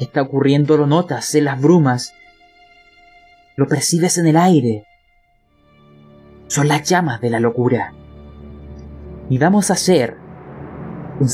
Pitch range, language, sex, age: 115-150 Hz, Spanish, male, 30-49